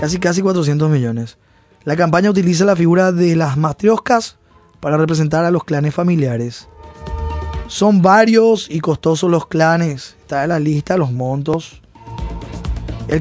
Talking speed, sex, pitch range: 140 wpm, male, 150-195 Hz